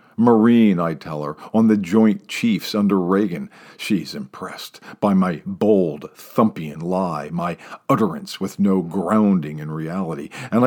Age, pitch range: 50-69, 105-150 Hz